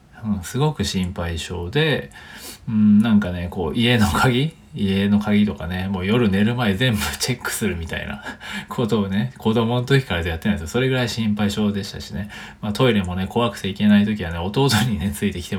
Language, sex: Japanese, male